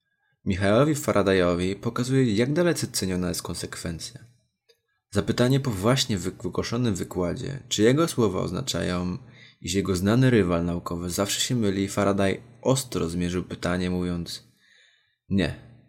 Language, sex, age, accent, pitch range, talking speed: Polish, male, 20-39, native, 95-130 Hz, 115 wpm